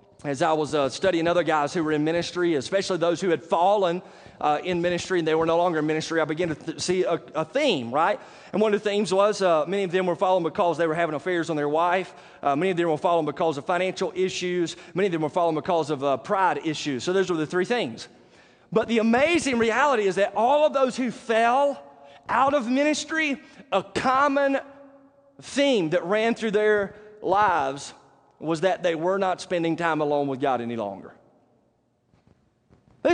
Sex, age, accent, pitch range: male, 30-49, American, 170-240 Hz